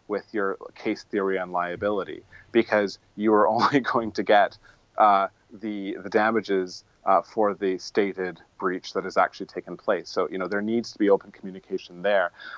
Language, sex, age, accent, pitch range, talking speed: English, male, 30-49, American, 95-110 Hz, 175 wpm